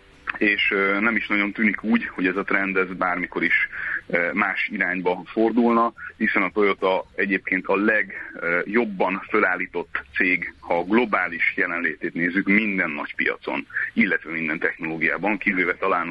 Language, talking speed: Hungarian, 135 wpm